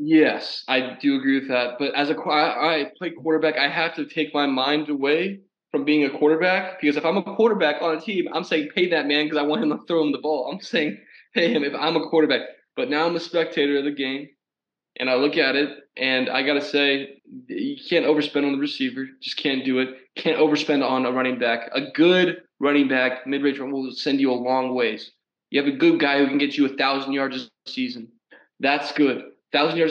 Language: English